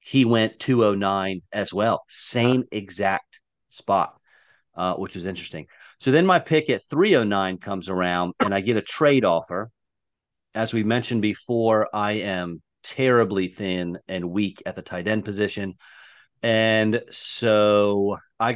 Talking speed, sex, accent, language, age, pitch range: 140 wpm, male, American, English, 40-59, 95-115 Hz